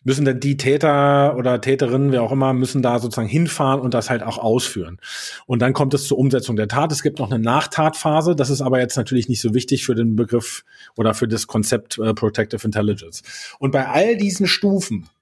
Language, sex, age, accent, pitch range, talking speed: German, male, 30-49, German, 115-140 Hz, 215 wpm